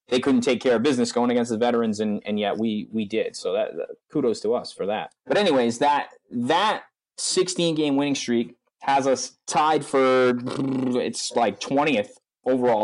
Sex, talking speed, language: male, 185 wpm, English